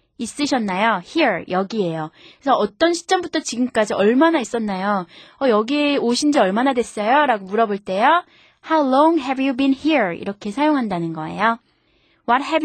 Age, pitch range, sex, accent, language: 20-39, 205-290 Hz, female, native, Korean